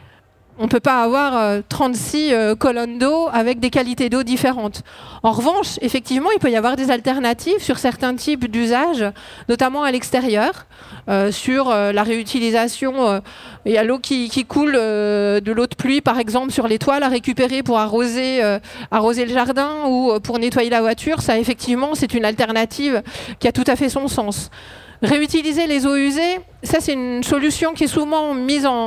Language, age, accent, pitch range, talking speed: French, 40-59, French, 235-285 Hz, 175 wpm